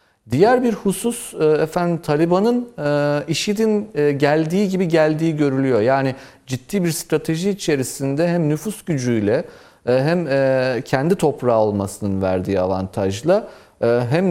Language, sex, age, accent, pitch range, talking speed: Turkish, male, 40-59, native, 135-175 Hz, 105 wpm